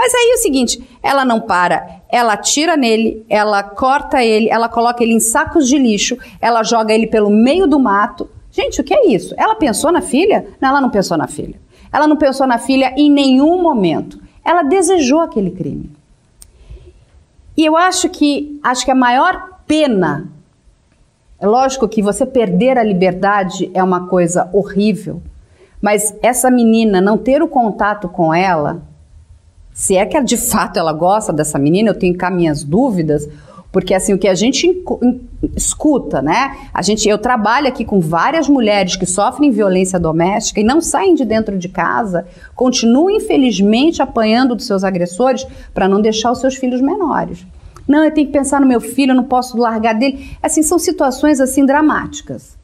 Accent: Brazilian